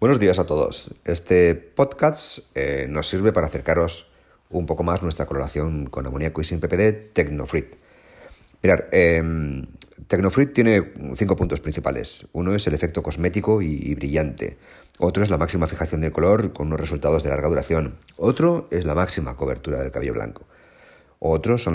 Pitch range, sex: 75-105 Hz, male